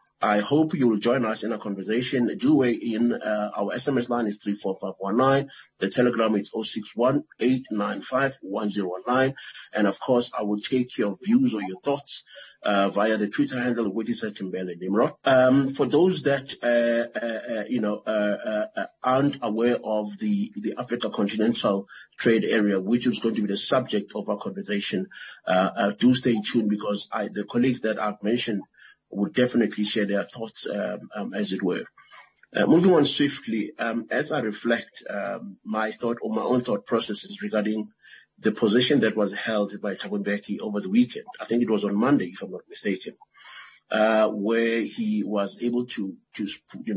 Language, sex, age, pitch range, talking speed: English, male, 30-49, 105-125 Hz, 190 wpm